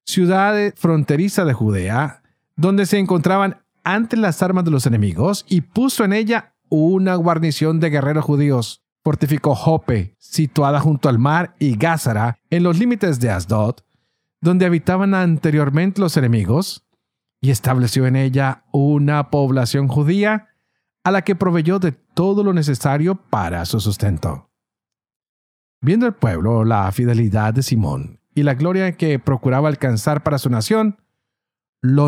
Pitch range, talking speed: 130-180 Hz, 140 wpm